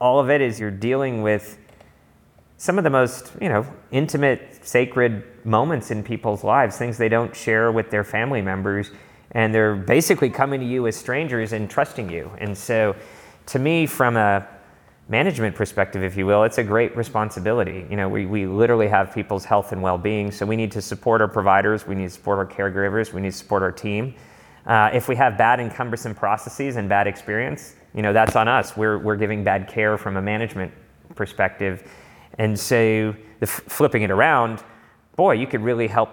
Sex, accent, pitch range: male, American, 100-115 Hz